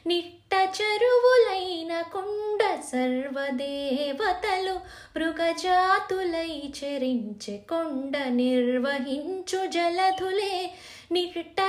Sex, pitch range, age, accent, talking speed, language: female, 325-425 Hz, 20-39, native, 50 wpm, Telugu